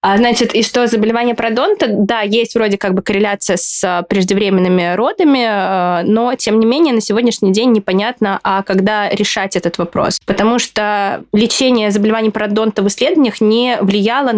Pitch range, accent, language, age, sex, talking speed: 180-225 Hz, native, Russian, 20-39, female, 155 wpm